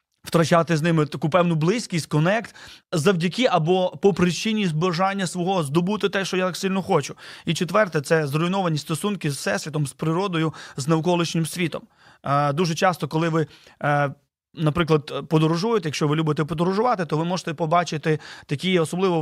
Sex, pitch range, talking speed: male, 160-190 Hz, 155 wpm